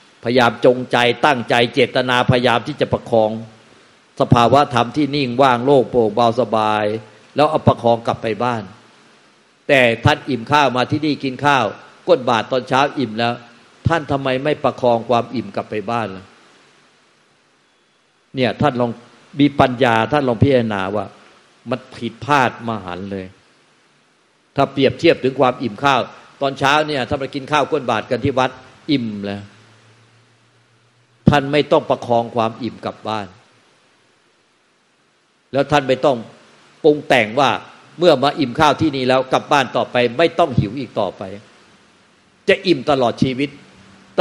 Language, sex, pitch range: Thai, male, 115-145 Hz